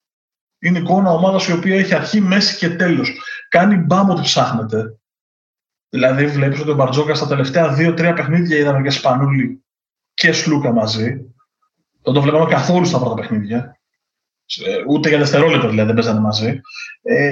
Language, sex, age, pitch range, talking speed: Greek, male, 20-39, 140-180 Hz, 155 wpm